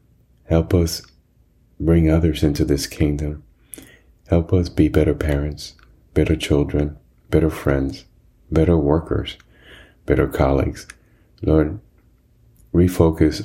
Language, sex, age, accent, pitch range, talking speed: English, male, 30-49, American, 70-80 Hz, 100 wpm